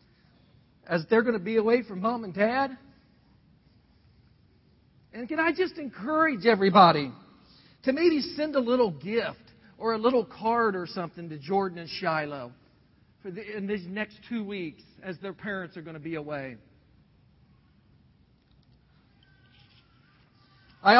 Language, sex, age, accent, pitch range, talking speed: English, male, 50-69, American, 170-235 Hz, 130 wpm